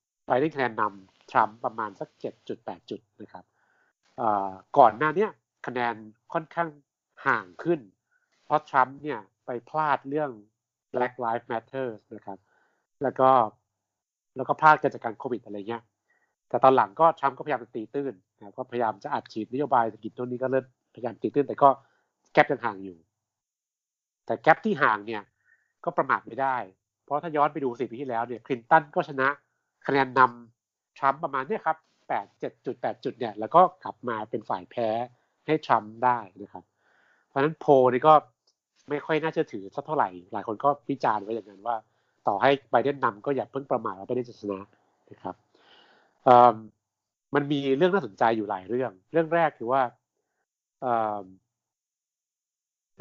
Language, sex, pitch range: Thai, male, 110-145 Hz